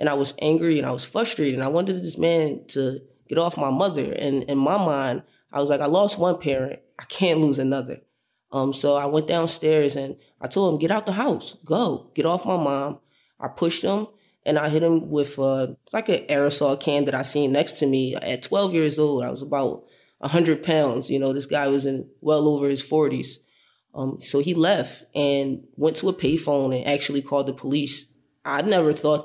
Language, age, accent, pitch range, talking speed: English, 20-39, American, 140-155 Hz, 220 wpm